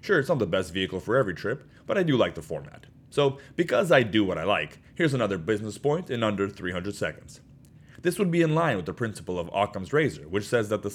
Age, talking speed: 30-49, 245 wpm